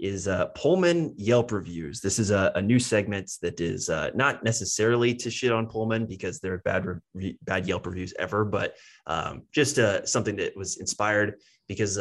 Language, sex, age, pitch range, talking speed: English, male, 20-39, 95-115 Hz, 185 wpm